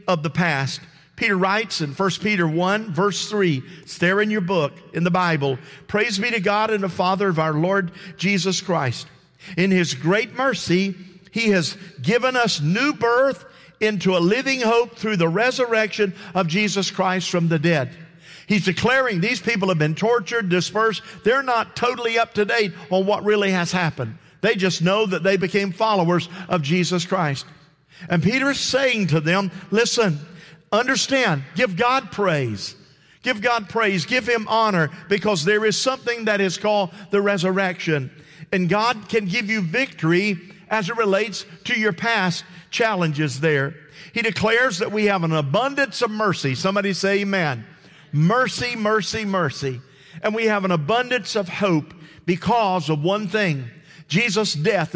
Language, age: English, 50-69